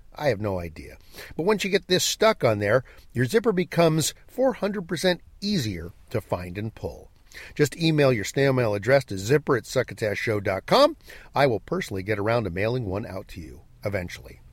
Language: English